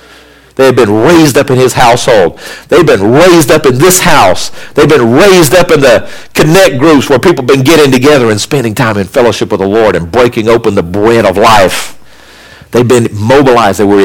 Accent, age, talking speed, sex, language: American, 50-69, 220 wpm, male, English